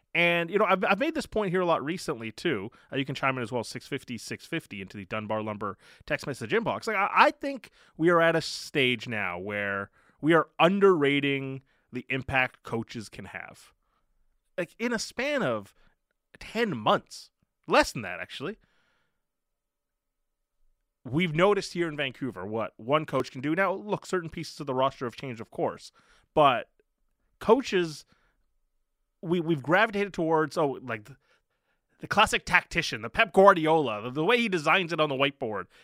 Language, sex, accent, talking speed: English, male, American, 170 wpm